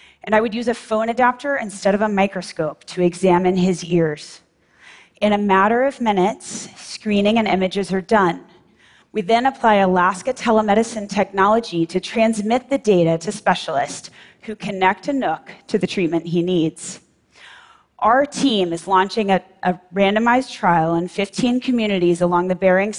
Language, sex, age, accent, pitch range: Chinese, female, 30-49, American, 180-220 Hz